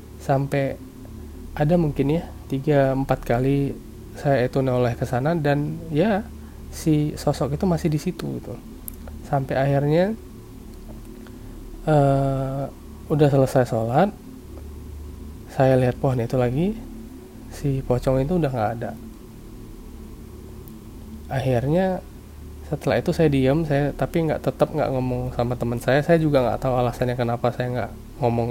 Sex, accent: male, native